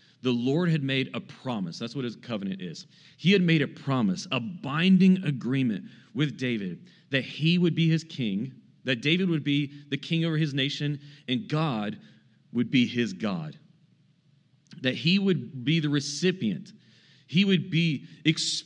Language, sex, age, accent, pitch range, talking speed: English, male, 40-59, American, 135-180 Hz, 165 wpm